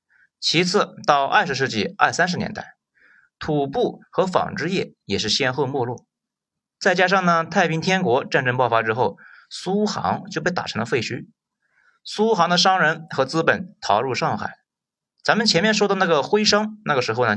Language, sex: Chinese, male